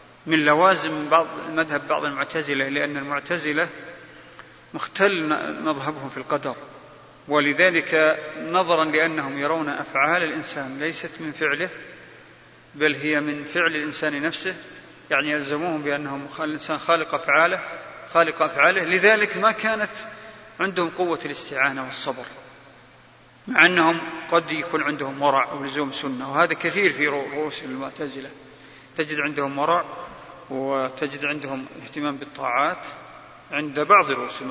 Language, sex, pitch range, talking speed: Arabic, male, 140-175 Hz, 115 wpm